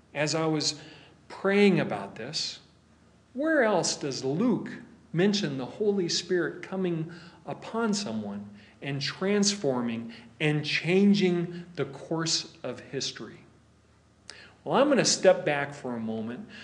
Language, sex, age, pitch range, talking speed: English, male, 40-59, 145-225 Hz, 125 wpm